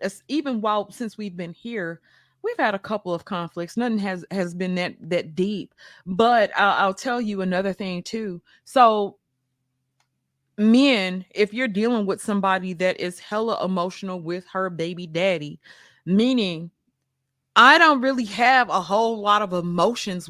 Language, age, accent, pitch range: English, 20-39, American, 180-230 Hz